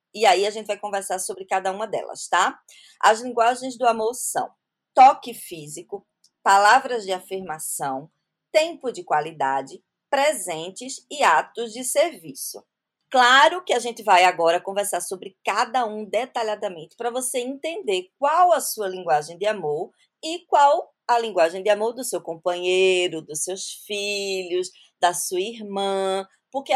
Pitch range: 190-260 Hz